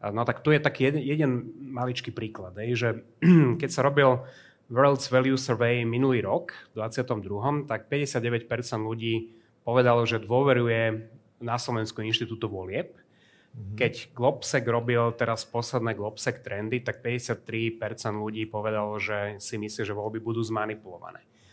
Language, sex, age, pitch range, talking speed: Slovak, male, 30-49, 110-130 Hz, 130 wpm